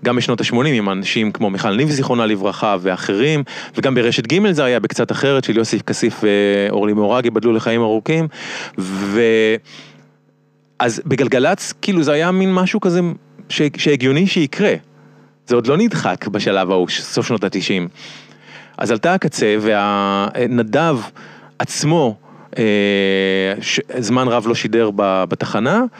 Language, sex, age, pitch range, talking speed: Hebrew, male, 30-49, 100-150 Hz, 130 wpm